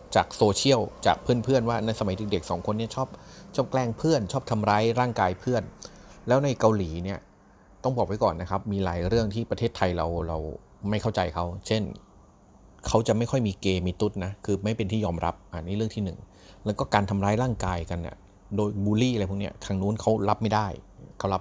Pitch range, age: 90-110 Hz, 30-49